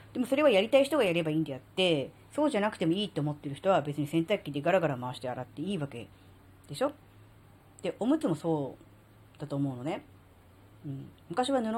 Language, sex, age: Japanese, female, 40-59